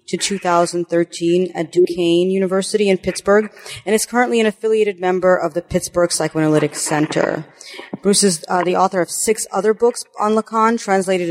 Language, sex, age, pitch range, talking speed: English, female, 30-49, 165-195 Hz, 160 wpm